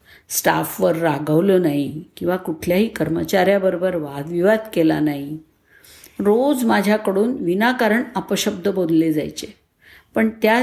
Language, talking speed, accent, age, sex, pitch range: Marathi, 95 wpm, native, 50-69, female, 160-205 Hz